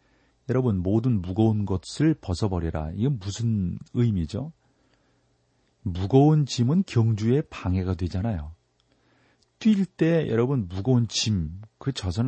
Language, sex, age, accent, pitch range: Korean, male, 40-59, native, 95-130 Hz